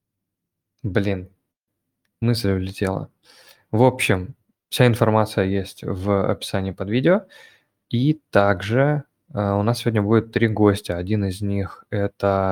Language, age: Russian, 20-39